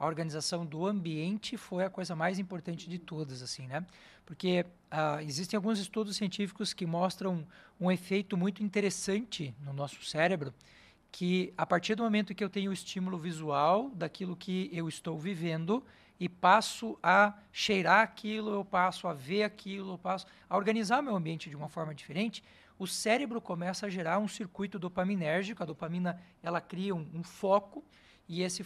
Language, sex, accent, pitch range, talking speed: Portuguese, male, Brazilian, 170-205 Hz, 170 wpm